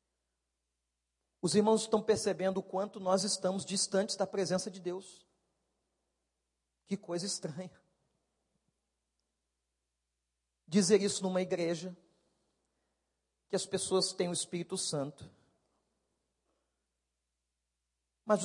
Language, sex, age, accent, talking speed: Portuguese, male, 50-69, Brazilian, 90 wpm